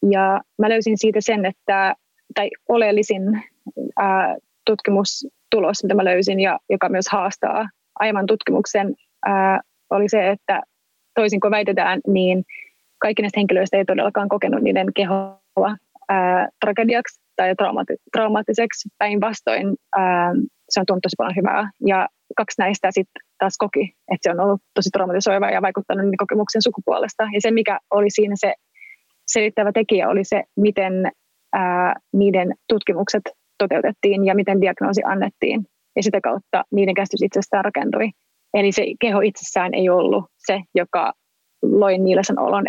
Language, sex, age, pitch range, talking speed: Finnish, female, 20-39, 195-215 Hz, 140 wpm